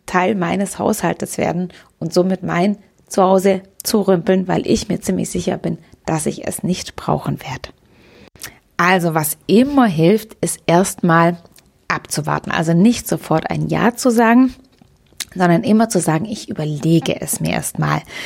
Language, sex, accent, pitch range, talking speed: English, female, German, 165-205 Hz, 150 wpm